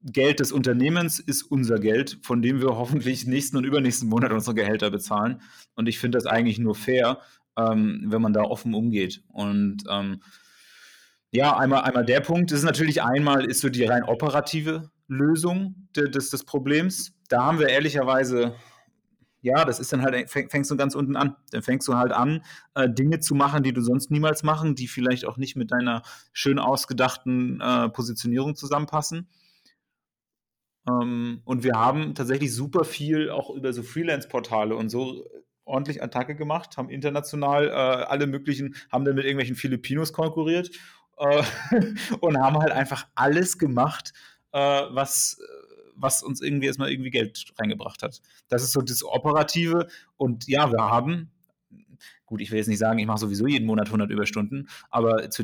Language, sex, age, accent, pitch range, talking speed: German, male, 30-49, German, 120-150 Hz, 170 wpm